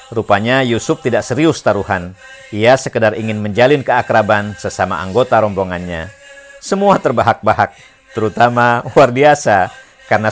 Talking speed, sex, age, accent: 110 wpm, male, 50-69, native